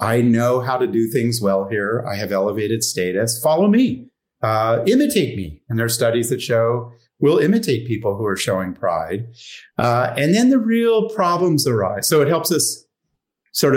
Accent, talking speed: American, 185 wpm